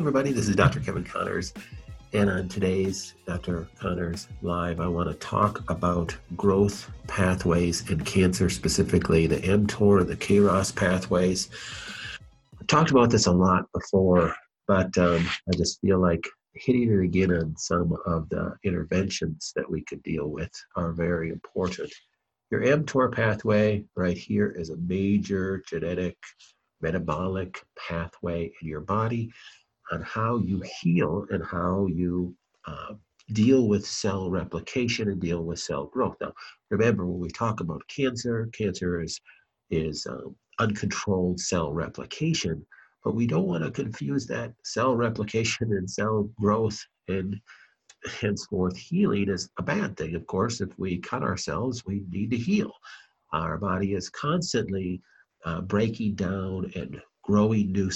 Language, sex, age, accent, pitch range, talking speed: English, male, 50-69, American, 90-105 Hz, 145 wpm